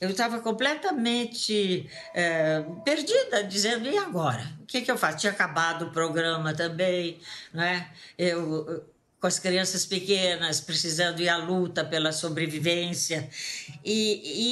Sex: female